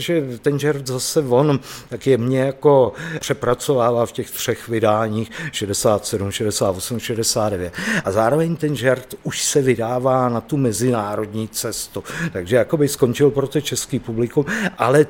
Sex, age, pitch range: male, 50-69, 115-145 Hz